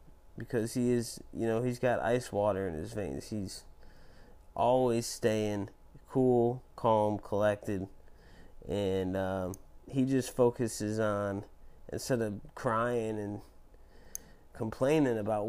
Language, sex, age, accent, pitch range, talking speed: English, male, 30-49, American, 75-110 Hz, 115 wpm